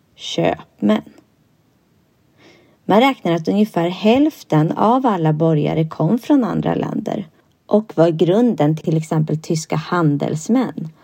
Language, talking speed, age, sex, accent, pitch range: Swedish, 115 wpm, 30-49, female, native, 160-240 Hz